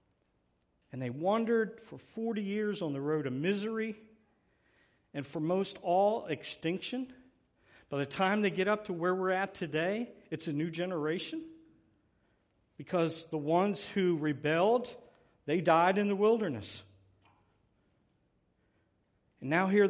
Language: English